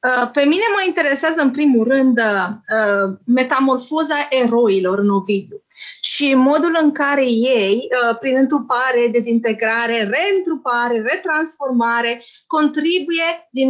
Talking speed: 100 wpm